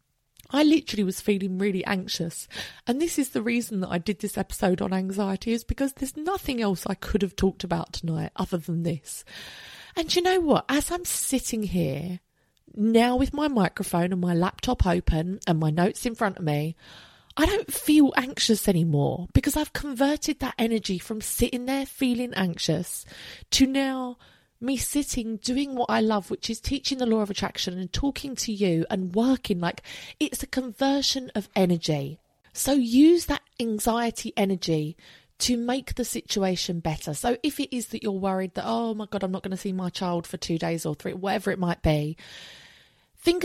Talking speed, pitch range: 185 wpm, 180-255 Hz